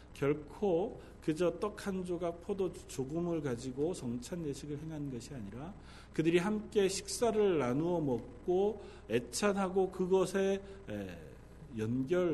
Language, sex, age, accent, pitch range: Korean, male, 40-59, native, 155-230 Hz